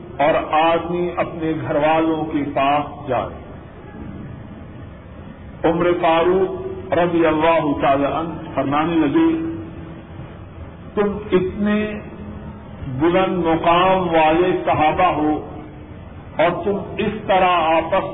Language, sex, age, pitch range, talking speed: Urdu, male, 50-69, 155-180 Hz, 95 wpm